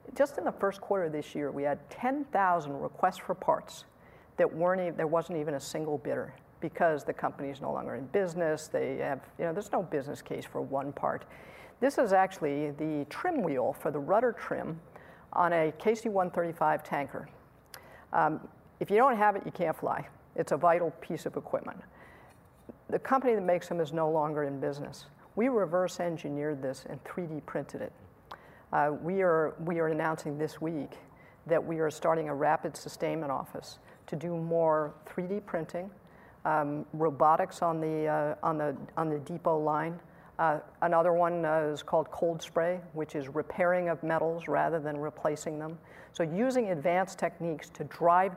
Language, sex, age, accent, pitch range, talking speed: English, female, 50-69, American, 155-180 Hz, 175 wpm